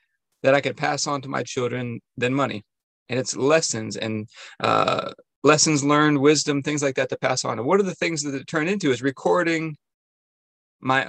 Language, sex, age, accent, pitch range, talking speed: English, male, 30-49, American, 130-155 Hz, 195 wpm